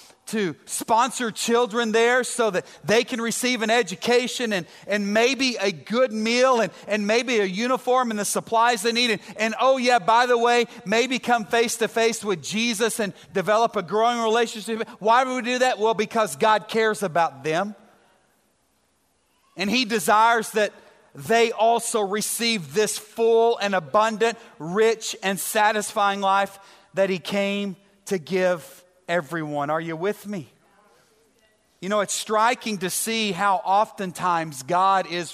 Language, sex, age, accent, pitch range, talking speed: English, male, 40-59, American, 185-230 Hz, 155 wpm